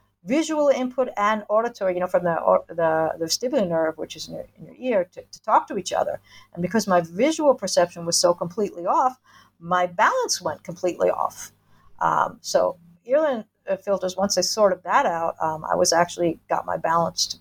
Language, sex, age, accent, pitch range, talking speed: English, female, 50-69, American, 165-195 Hz, 195 wpm